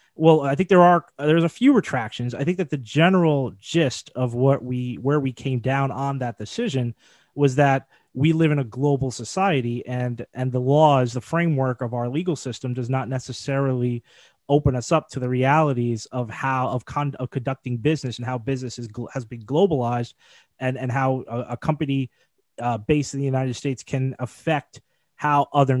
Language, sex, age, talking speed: English, male, 20-39, 190 wpm